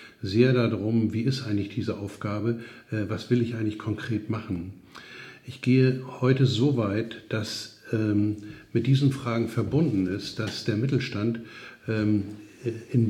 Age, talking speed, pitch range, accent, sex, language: 60-79, 130 wpm, 110-130 Hz, German, male, German